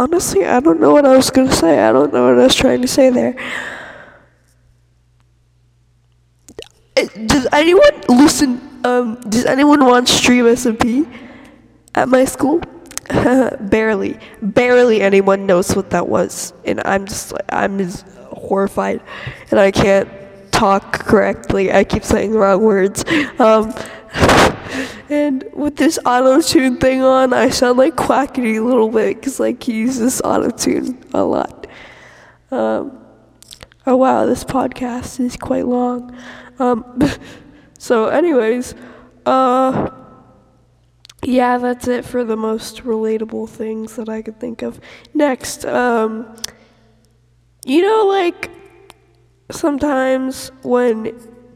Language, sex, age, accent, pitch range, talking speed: English, female, 10-29, American, 195-260 Hz, 125 wpm